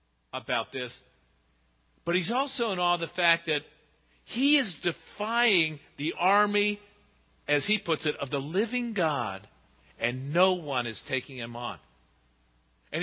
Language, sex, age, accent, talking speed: English, male, 50-69, American, 145 wpm